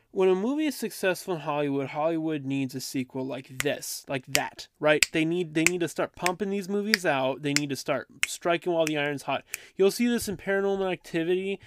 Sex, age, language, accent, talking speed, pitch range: male, 20-39, English, American, 210 wpm, 130-175 Hz